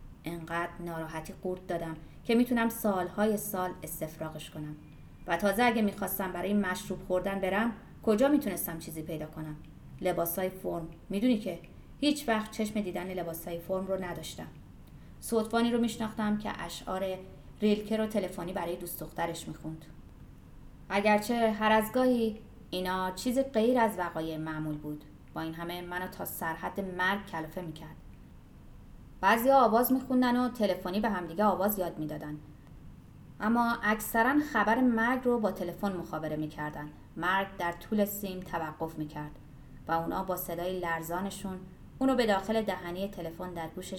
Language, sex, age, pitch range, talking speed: Persian, female, 30-49, 165-215 Hz, 140 wpm